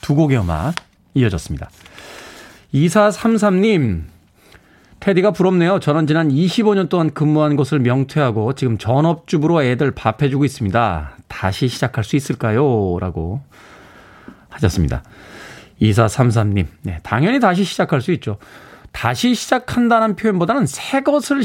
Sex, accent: male, native